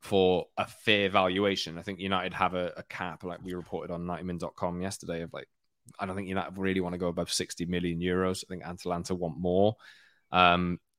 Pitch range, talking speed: 90-105 Hz, 200 wpm